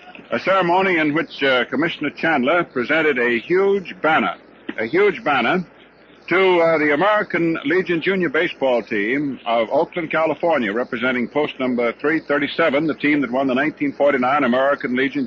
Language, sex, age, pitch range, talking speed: English, male, 60-79, 135-170 Hz, 145 wpm